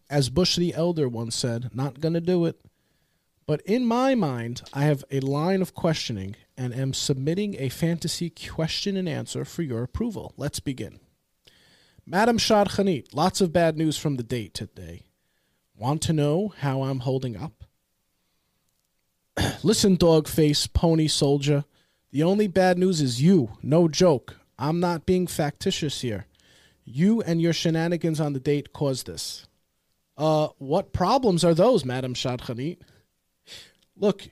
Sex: male